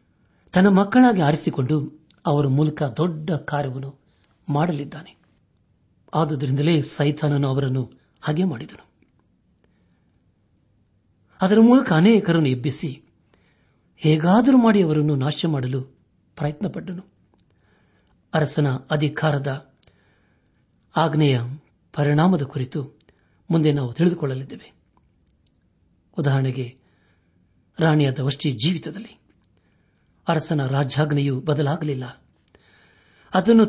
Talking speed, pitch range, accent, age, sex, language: 70 wpm, 120-165 Hz, native, 60-79, male, Kannada